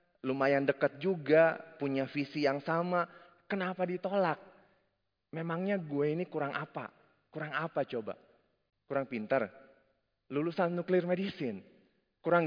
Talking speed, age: 110 wpm, 30-49